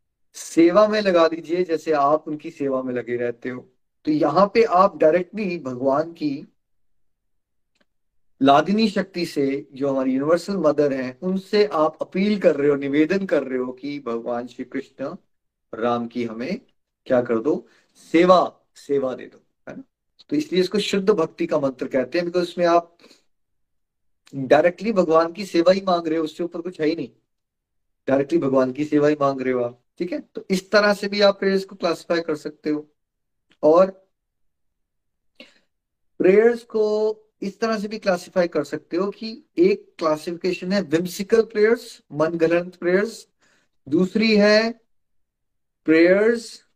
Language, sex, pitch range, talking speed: Hindi, male, 145-200 Hz, 155 wpm